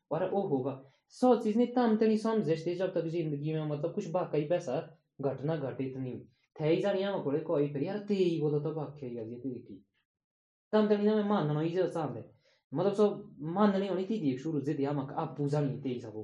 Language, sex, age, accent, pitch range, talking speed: Hindi, male, 20-39, native, 120-180 Hz, 80 wpm